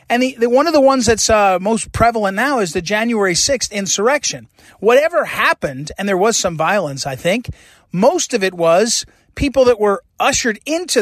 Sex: male